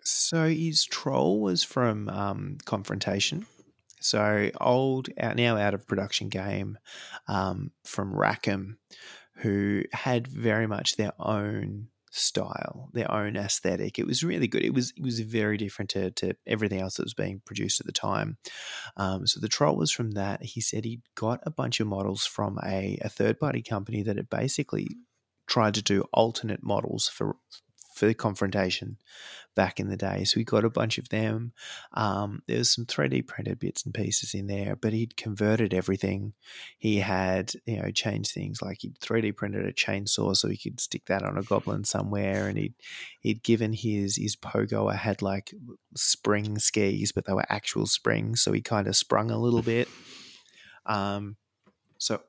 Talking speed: 175 wpm